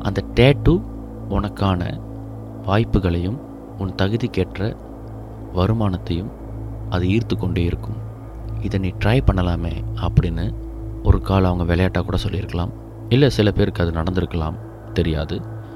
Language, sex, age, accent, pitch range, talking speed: Tamil, male, 30-49, native, 90-110 Hz, 110 wpm